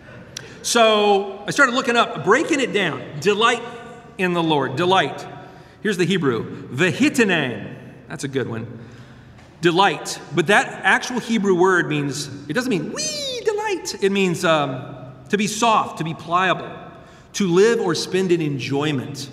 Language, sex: English, male